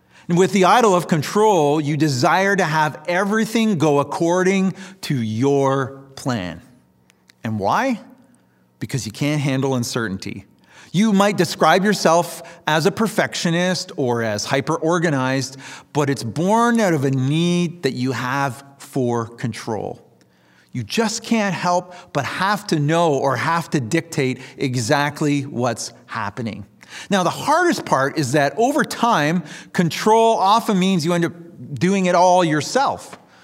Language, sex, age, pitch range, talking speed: English, male, 40-59, 125-180 Hz, 140 wpm